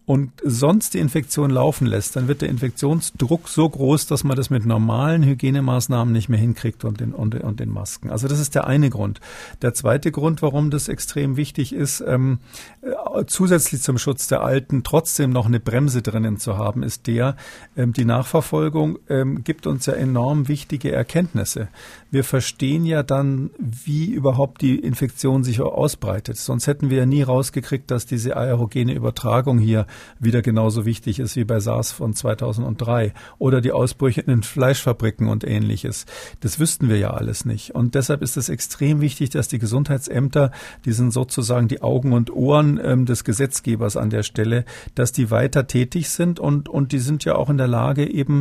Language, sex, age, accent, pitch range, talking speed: German, male, 50-69, German, 120-145 Hz, 180 wpm